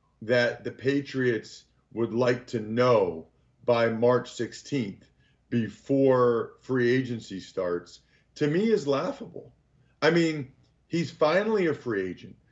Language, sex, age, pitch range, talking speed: English, male, 40-59, 125-175 Hz, 120 wpm